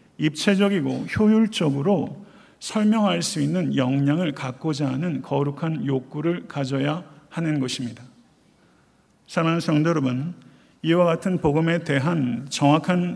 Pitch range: 140-180 Hz